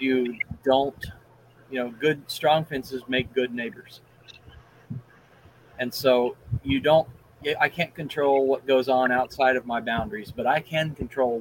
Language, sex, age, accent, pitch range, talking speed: English, male, 40-59, American, 120-135 Hz, 145 wpm